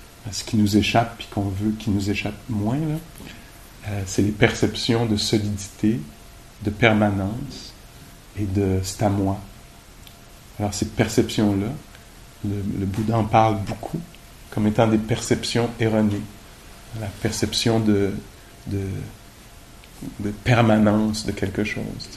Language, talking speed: English, 135 wpm